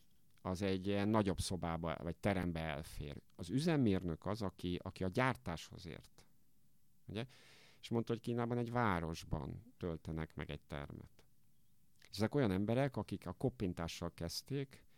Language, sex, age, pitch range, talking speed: Hungarian, male, 50-69, 85-115 Hz, 135 wpm